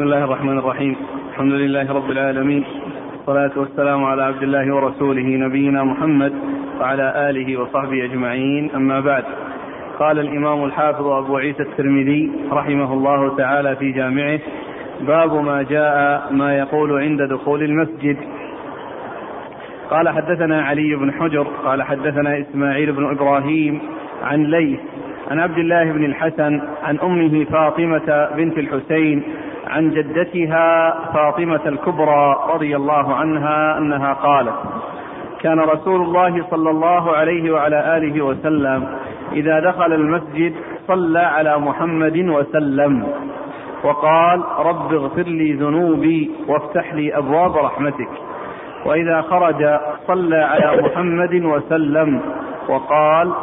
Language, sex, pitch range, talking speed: Arabic, male, 140-160 Hz, 115 wpm